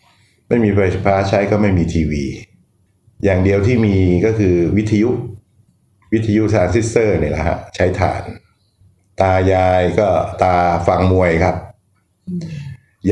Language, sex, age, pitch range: Thai, male, 60-79, 90-105 Hz